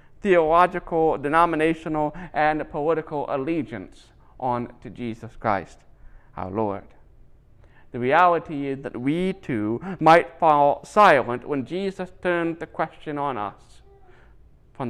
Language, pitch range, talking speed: English, 130-175 Hz, 115 wpm